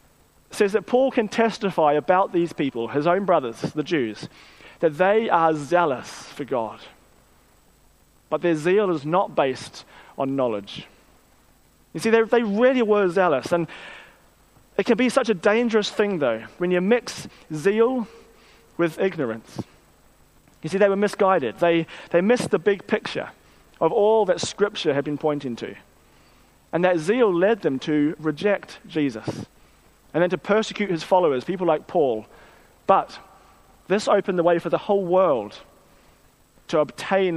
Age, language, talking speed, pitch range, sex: 30-49, English, 155 wpm, 150-200 Hz, male